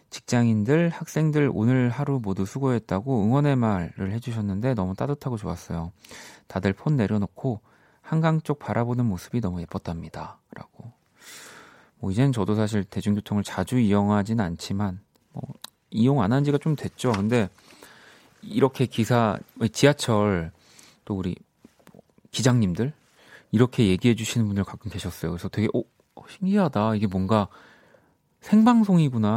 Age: 30-49